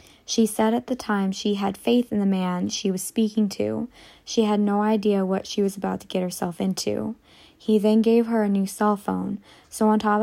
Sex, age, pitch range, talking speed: female, 20-39, 190-215 Hz, 225 wpm